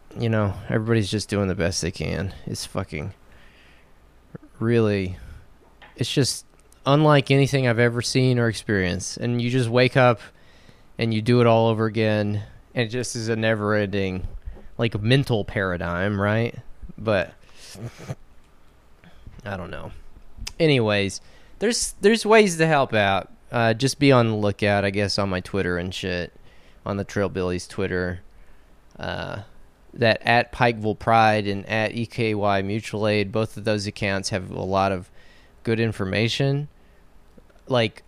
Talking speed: 145 wpm